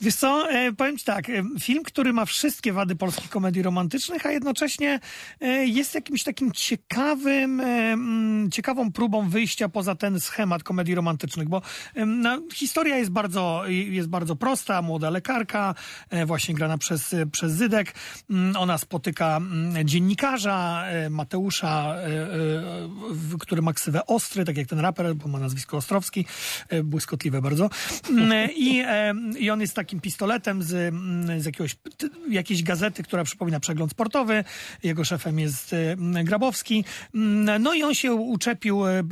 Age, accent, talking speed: 40-59, native, 125 wpm